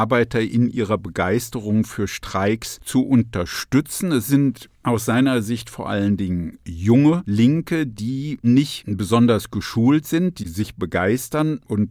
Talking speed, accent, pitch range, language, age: 135 wpm, German, 100-125 Hz, German, 50-69